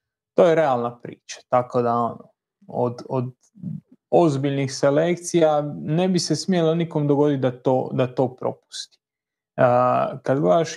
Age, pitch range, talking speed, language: 30-49, 125-160 Hz, 140 wpm, Croatian